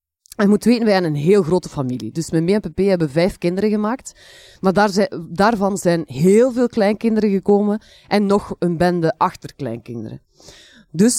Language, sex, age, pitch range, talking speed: Dutch, female, 20-39, 160-215 Hz, 175 wpm